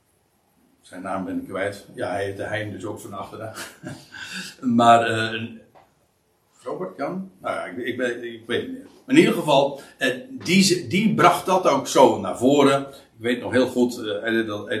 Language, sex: Dutch, male